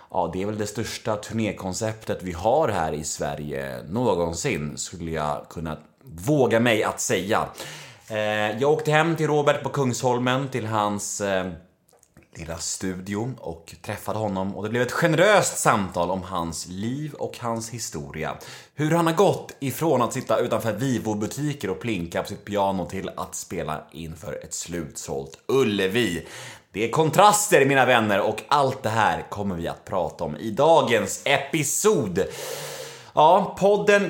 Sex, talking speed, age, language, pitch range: male, 150 wpm, 30-49, Swedish, 95-150 Hz